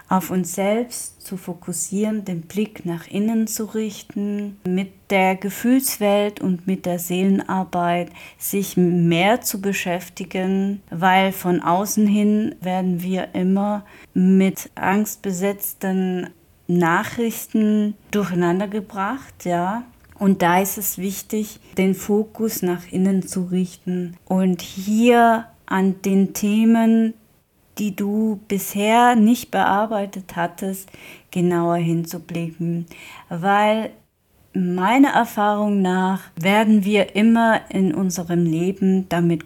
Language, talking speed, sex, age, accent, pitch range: German, 105 wpm, female, 30-49, German, 180-210 Hz